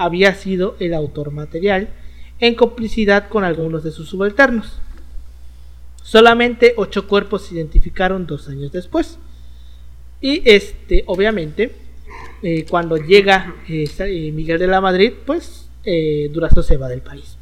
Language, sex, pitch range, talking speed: Spanish, male, 150-215 Hz, 130 wpm